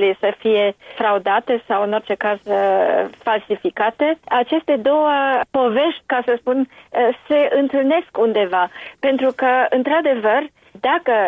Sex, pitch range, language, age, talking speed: female, 210-250 Hz, Romanian, 40-59, 110 wpm